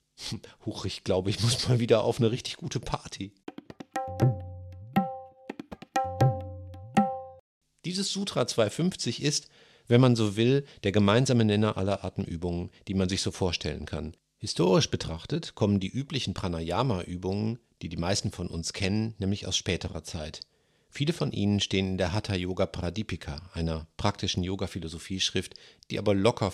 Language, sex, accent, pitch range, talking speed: German, male, German, 90-120 Hz, 135 wpm